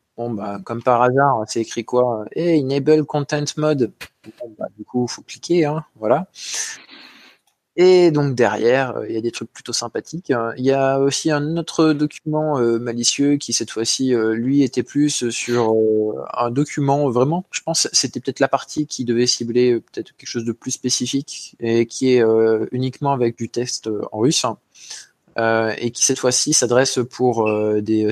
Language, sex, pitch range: French, male, 110-135 Hz